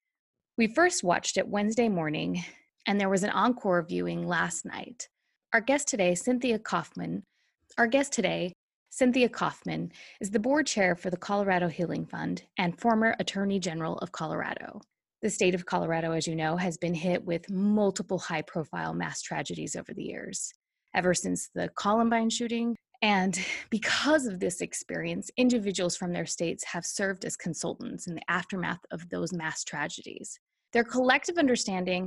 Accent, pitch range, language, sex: American, 175-230 Hz, English, female